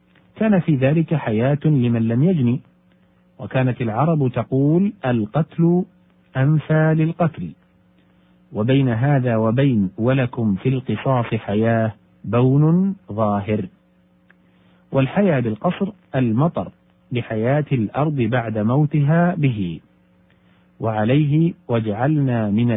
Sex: male